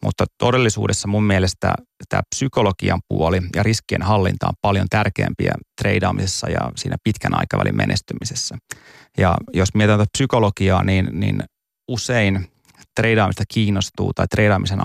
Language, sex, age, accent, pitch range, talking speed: Finnish, male, 30-49, native, 95-115 Hz, 125 wpm